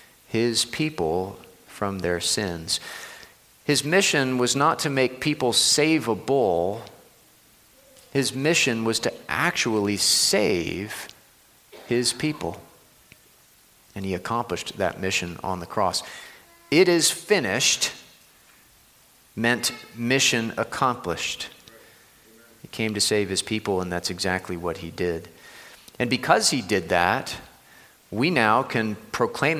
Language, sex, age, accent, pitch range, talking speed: English, male, 40-59, American, 95-135 Hz, 115 wpm